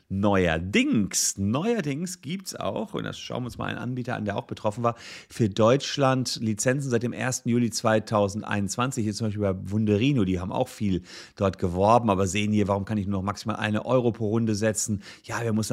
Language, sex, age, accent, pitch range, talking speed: German, male, 40-59, German, 110-165 Hz, 205 wpm